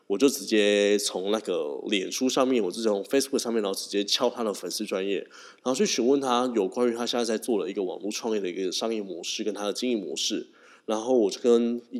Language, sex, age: Chinese, male, 20-39